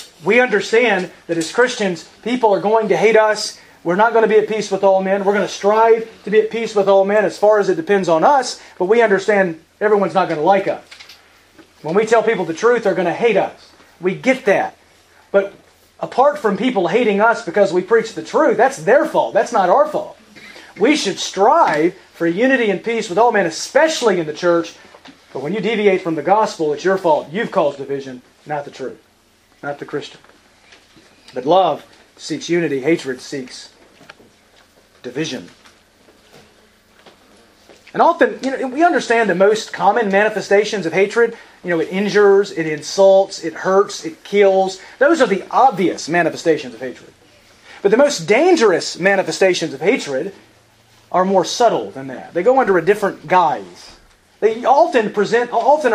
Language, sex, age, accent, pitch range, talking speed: English, male, 30-49, American, 180-225 Hz, 185 wpm